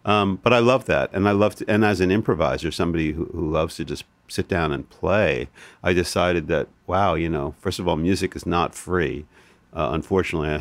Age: 50-69